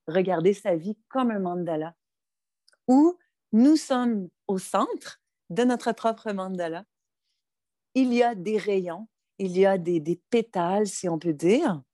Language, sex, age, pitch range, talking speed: French, female, 40-59, 175-220 Hz, 150 wpm